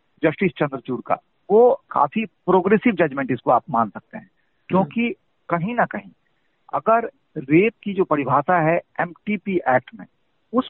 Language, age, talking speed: Hindi, 50-69, 145 wpm